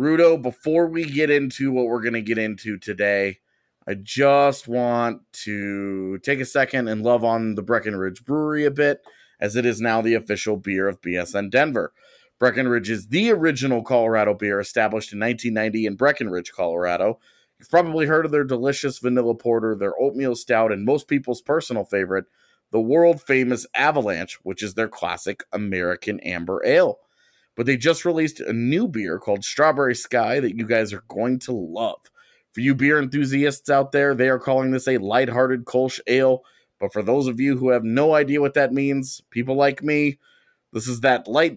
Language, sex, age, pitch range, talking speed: English, male, 30-49, 110-140 Hz, 180 wpm